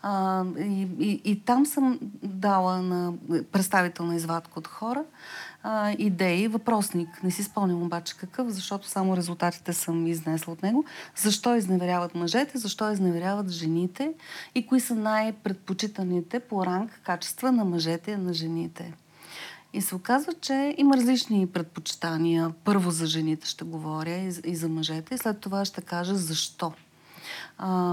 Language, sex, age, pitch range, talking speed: Bulgarian, female, 40-59, 175-235 Hz, 150 wpm